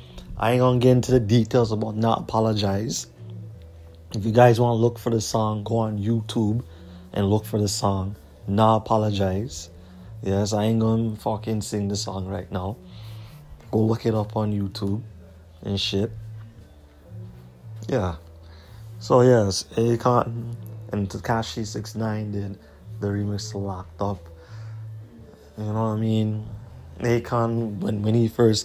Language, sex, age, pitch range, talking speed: English, male, 30-49, 100-115 Hz, 140 wpm